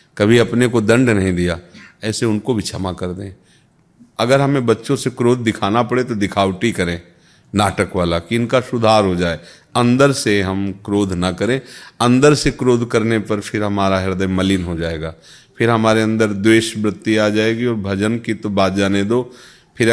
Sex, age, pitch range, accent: male, 40-59, 100-125 Hz, native